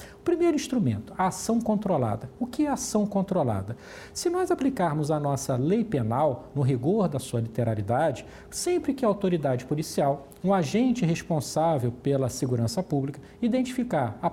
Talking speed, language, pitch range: 145 wpm, Portuguese, 145-230 Hz